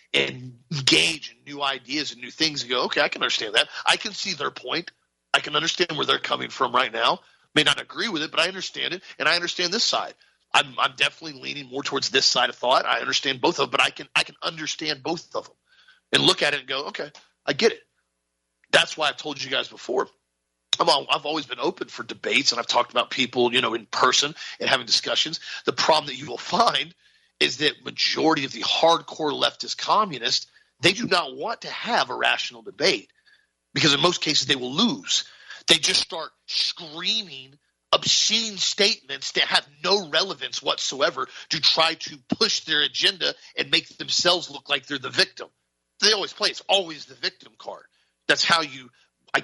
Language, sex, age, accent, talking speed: English, male, 40-59, American, 210 wpm